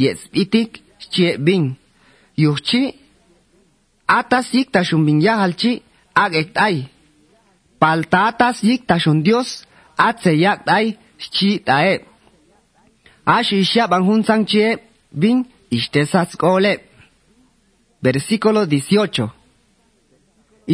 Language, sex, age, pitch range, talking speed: Spanish, male, 30-49, 165-220 Hz, 80 wpm